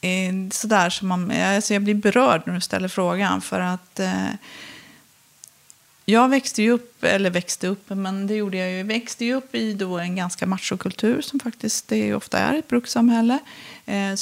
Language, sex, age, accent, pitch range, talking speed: Swedish, female, 30-49, native, 185-225 Hz, 180 wpm